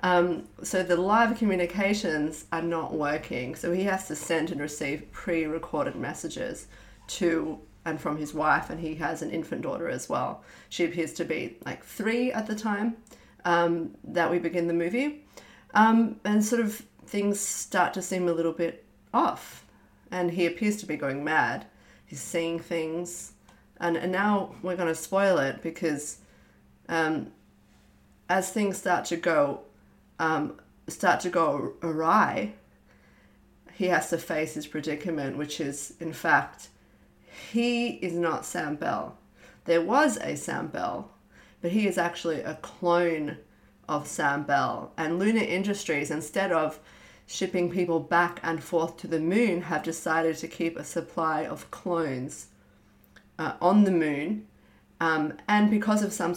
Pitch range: 160-190 Hz